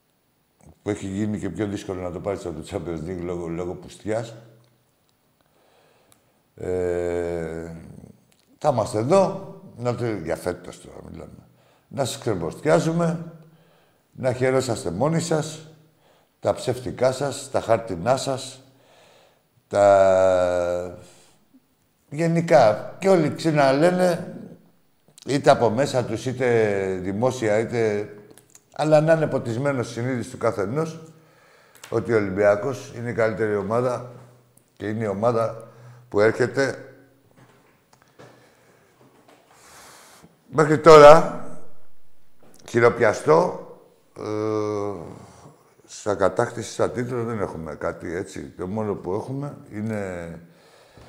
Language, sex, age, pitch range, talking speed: Greek, male, 60-79, 100-140 Hz, 100 wpm